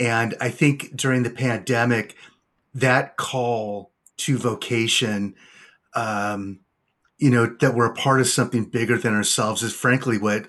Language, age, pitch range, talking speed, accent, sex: English, 30-49, 110-130 Hz, 145 wpm, American, male